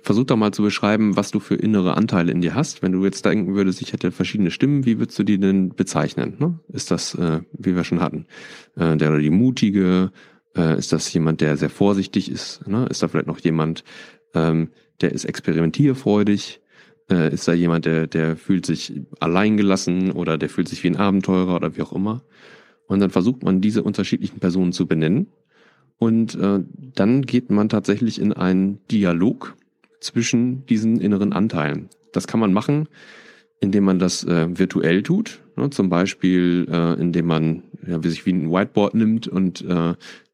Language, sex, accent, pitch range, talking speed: German, male, German, 85-110 Hz, 170 wpm